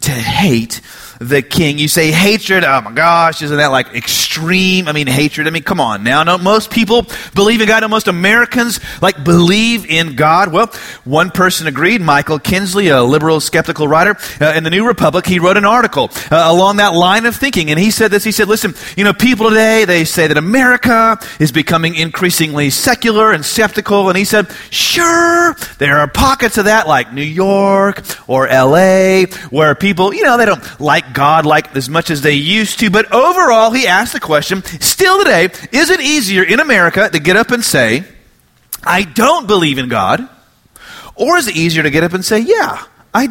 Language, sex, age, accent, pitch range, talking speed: English, male, 30-49, American, 155-225 Hz, 200 wpm